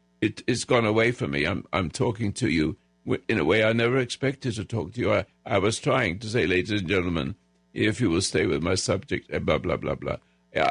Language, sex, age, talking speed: English, male, 60-79, 235 wpm